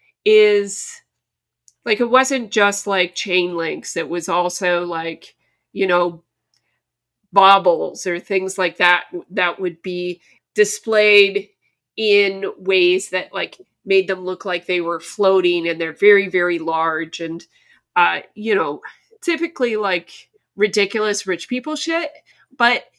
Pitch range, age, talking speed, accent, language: 185-250 Hz, 30-49, 130 wpm, American, English